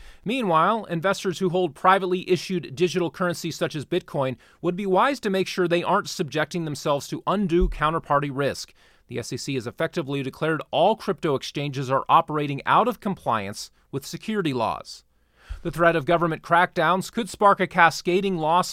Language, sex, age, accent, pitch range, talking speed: English, male, 30-49, American, 135-180 Hz, 165 wpm